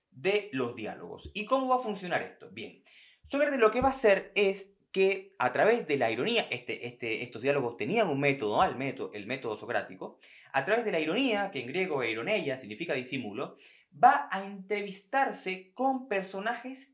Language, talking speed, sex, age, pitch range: Spanish, 185 wpm, male, 20-39, 165-245 Hz